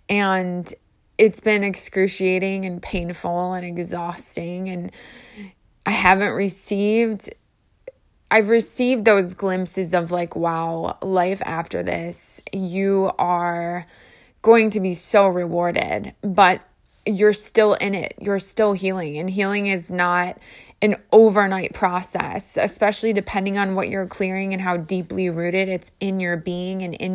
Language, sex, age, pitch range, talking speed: English, female, 20-39, 180-205 Hz, 135 wpm